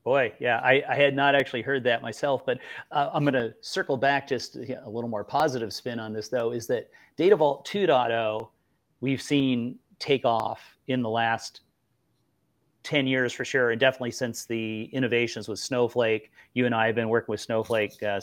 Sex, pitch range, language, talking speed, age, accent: male, 110-140 Hz, English, 190 wpm, 30-49, American